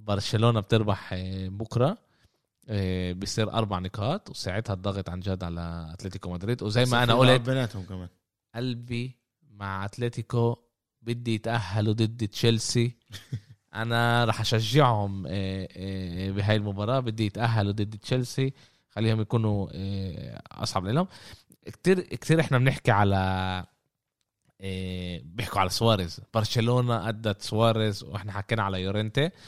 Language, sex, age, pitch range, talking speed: Arabic, male, 20-39, 95-120 Hz, 110 wpm